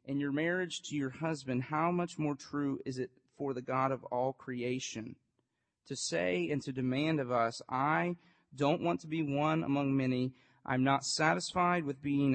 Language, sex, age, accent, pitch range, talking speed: English, male, 40-59, American, 135-165 Hz, 185 wpm